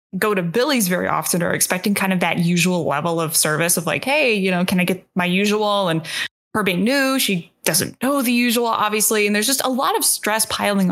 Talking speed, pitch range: 230 wpm, 180-250 Hz